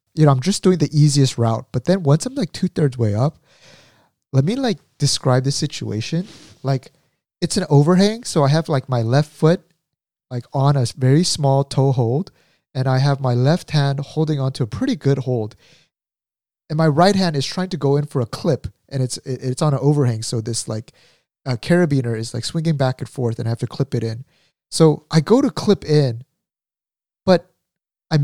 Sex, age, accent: male, 30-49, American